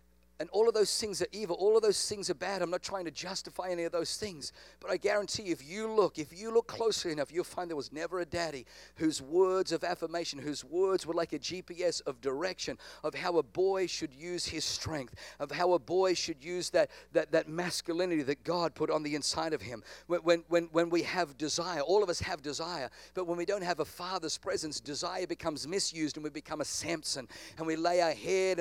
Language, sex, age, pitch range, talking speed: English, male, 50-69, 155-185 Hz, 235 wpm